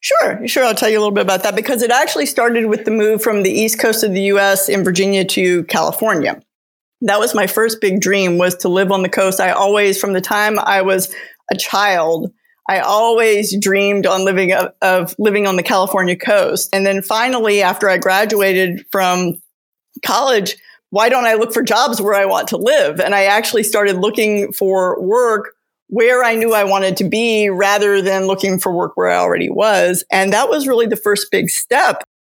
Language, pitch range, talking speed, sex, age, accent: English, 195-230 Hz, 205 wpm, female, 40-59, American